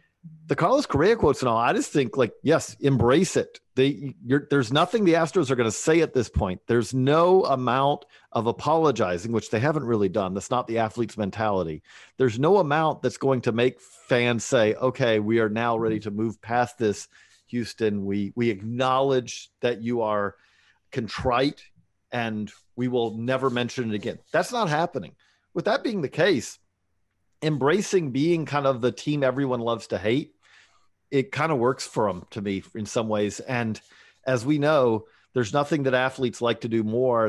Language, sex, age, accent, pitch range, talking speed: English, male, 40-59, American, 110-140 Hz, 180 wpm